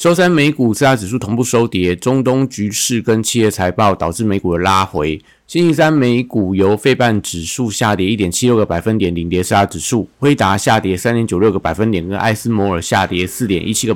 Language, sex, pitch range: Chinese, male, 95-120 Hz